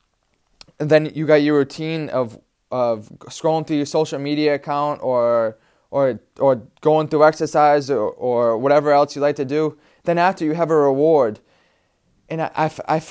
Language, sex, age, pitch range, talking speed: English, male, 20-39, 140-160 Hz, 170 wpm